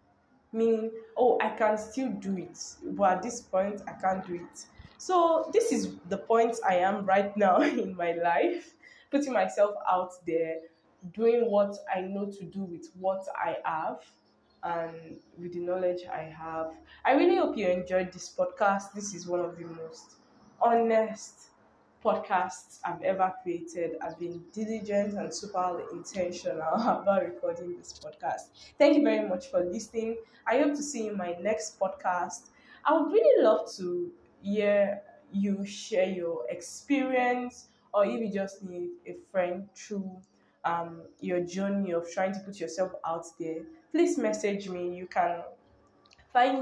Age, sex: 10-29, female